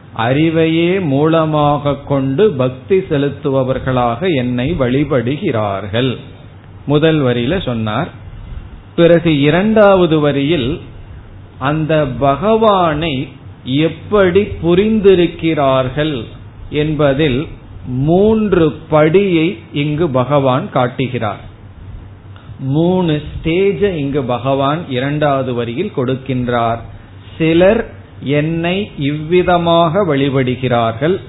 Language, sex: Tamil, male